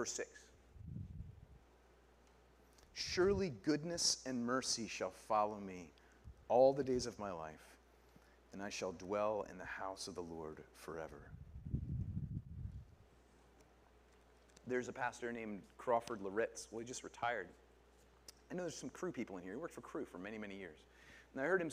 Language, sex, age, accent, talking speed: English, male, 40-59, American, 155 wpm